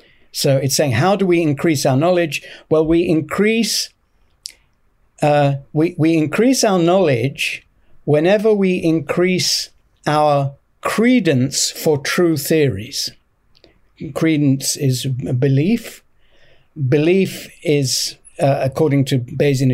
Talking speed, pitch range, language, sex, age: 105 wpm, 135-170 Hz, English, male, 60-79